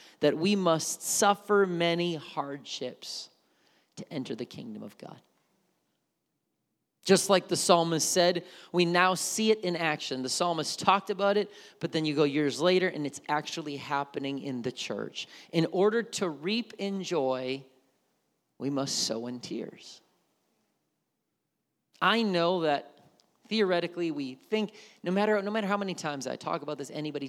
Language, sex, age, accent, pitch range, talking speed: English, male, 30-49, American, 135-200 Hz, 155 wpm